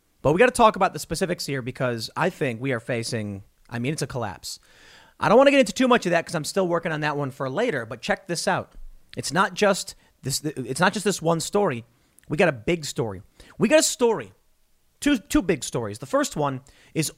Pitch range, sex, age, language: 140-205 Hz, male, 30-49, English